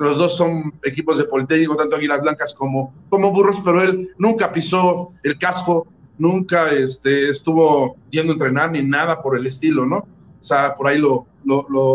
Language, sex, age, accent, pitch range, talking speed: Spanish, male, 50-69, Mexican, 145-180 Hz, 185 wpm